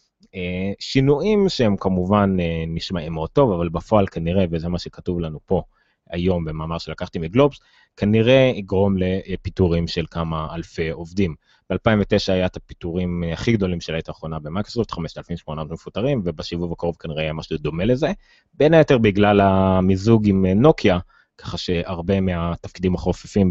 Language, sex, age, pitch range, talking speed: Hebrew, male, 30-49, 85-105 Hz, 140 wpm